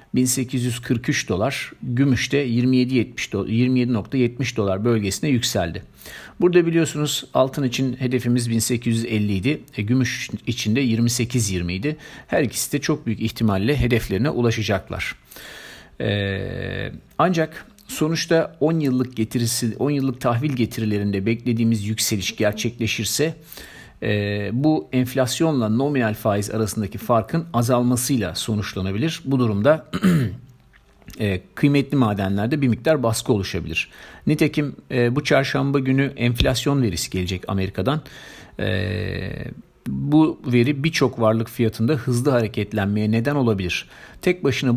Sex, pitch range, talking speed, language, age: male, 110-135 Hz, 110 wpm, Turkish, 50-69